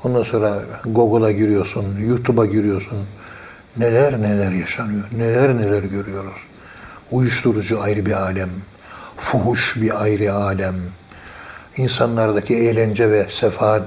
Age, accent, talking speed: 60-79, native, 105 wpm